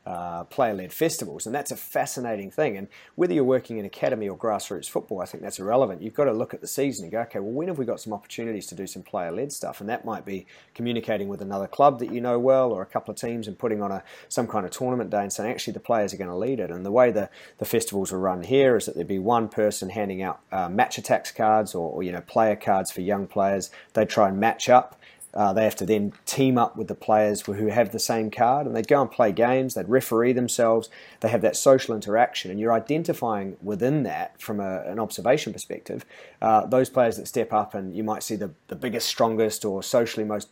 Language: English